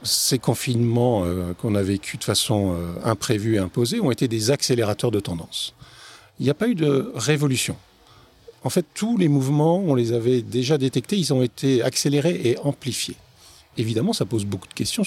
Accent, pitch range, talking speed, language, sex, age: French, 110-140 Hz, 185 wpm, French, male, 50-69